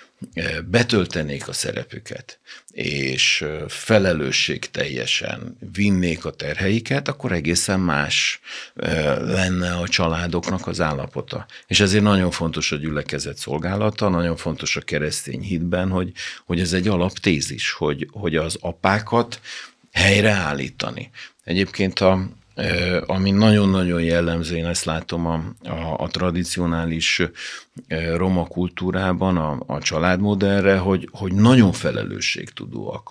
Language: Hungarian